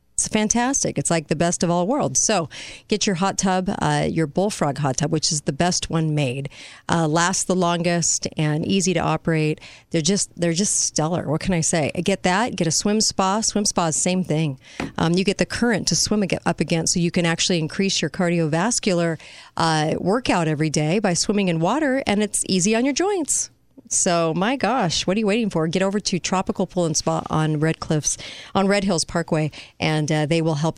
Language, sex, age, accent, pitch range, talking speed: English, female, 40-59, American, 160-195 Hz, 215 wpm